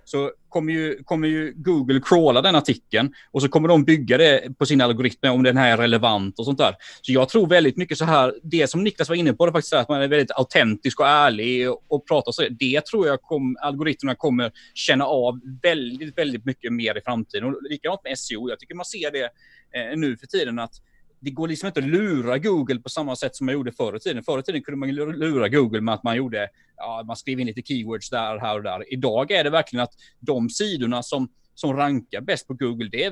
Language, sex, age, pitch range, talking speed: Swedish, male, 30-49, 120-150 Hz, 240 wpm